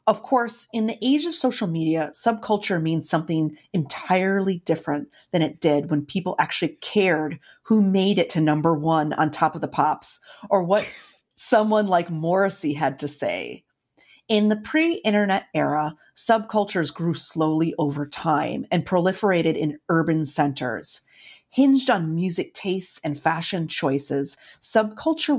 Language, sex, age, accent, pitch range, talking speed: English, female, 30-49, American, 155-210 Hz, 145 wpm